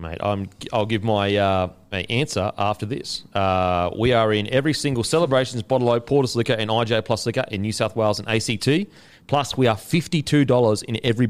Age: 30-49